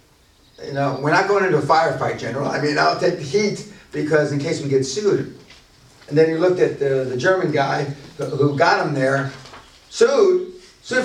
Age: 50-69